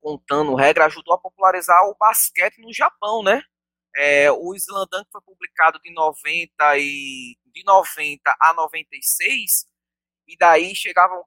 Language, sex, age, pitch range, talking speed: Portuguese, male, 20-39, 130-195 Hz, 135 wpm